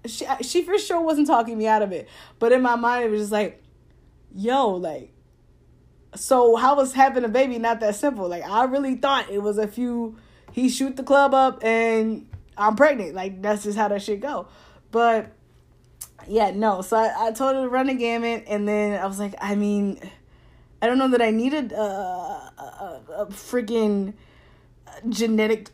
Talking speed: 195 wpm